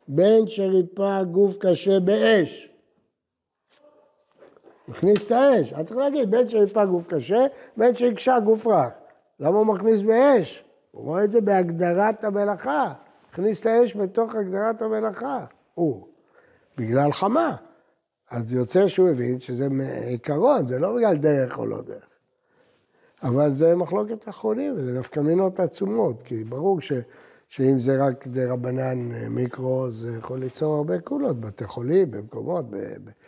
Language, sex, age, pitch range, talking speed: Hebrew, male, 60-79, 125-210 Hz, 135 wpm